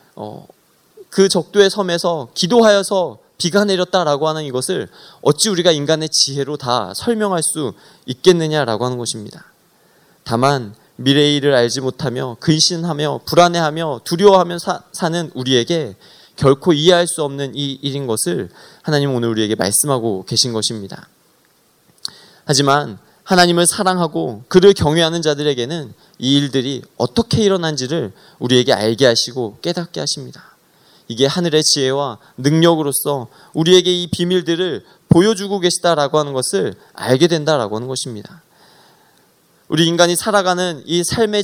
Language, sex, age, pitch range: Korean, male, 20-39, 130-185 Hz